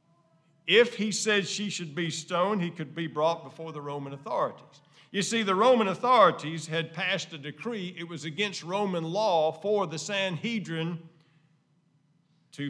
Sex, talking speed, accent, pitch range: male, 155 wpm, American, 155-205 Hz